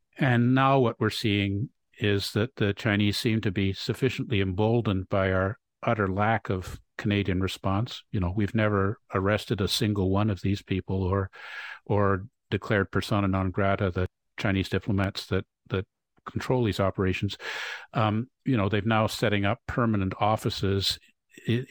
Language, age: English, 50-69